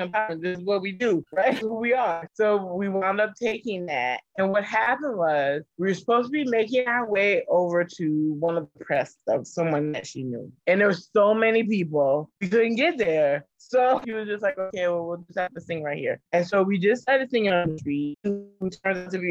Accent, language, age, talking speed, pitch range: American, English, 20-39, 235 wpm, 150-195 Hz